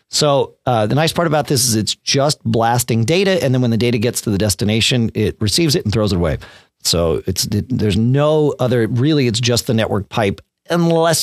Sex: male